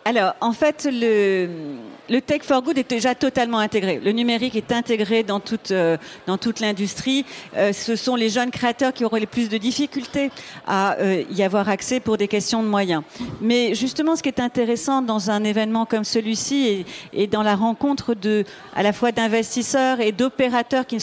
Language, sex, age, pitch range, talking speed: French, female, 40-59, 210-260 Hz, 195 wpm